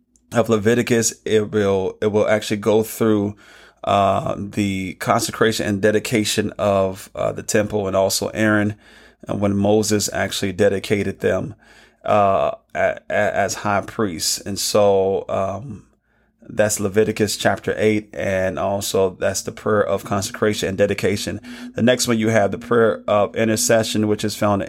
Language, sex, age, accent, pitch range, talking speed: English, male, 30-49, American, 100-110 Hz, 150 wpm